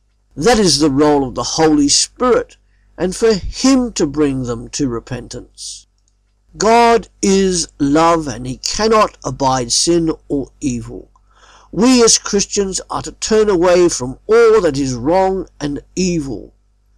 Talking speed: 140 wpm